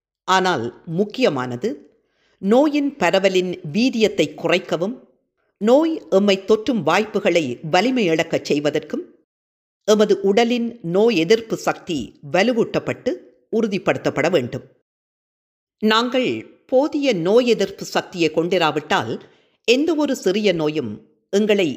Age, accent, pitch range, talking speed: 50-69, native, 165-230 Hz, 85 wpm